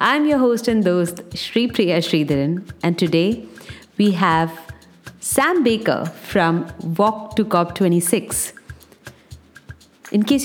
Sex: female